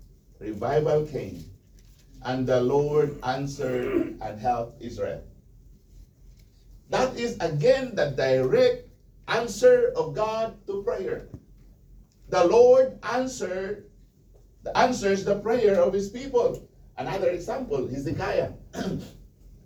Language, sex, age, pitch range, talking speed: English, male, 50-69, 150-225 Hz, 100 wpm